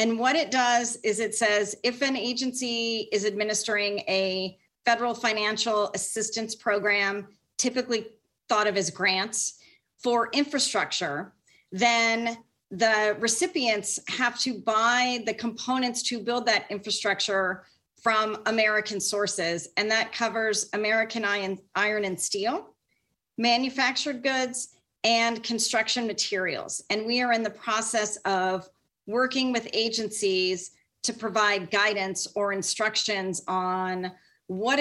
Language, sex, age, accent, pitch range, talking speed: English, female, 40-59, American, 205-240 Hz, 120 wpm